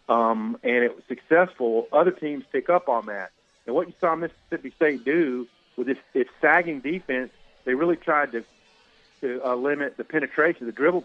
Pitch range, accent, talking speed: 125-155 Hz, American, 180 wpm